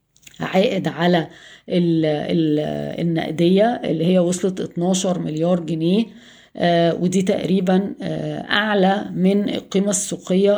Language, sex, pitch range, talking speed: Arabic, female, 165-195 Hz, 85 wpm